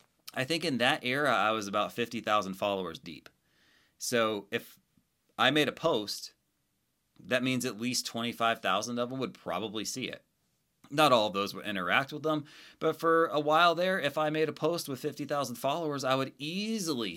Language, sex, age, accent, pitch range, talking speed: English, male, 30-49, American, 100-140 Hz, 180 wpm